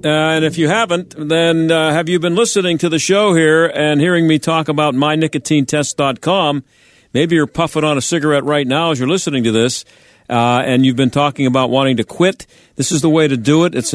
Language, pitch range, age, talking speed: English, 135-165 Hz, 50-69, 220 wpm